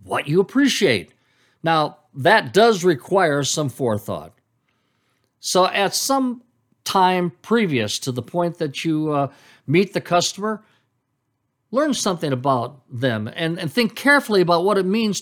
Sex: male